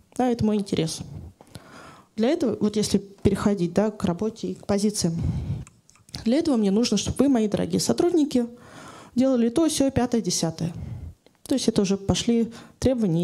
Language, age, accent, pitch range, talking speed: Russian, 20-39, native, 195-245 Hz, 160 wpm